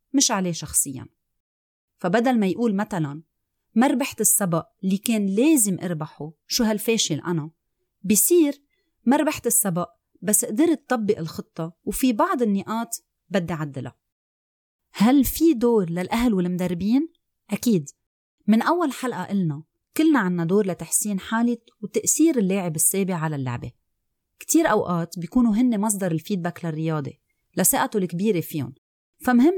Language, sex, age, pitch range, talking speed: Arabic, female, 30-49, 170-235 Hz, 120 wpm